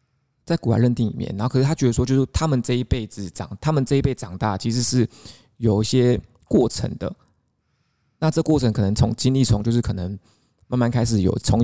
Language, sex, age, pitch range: Chinese, male, 20-39, 110-130 Hz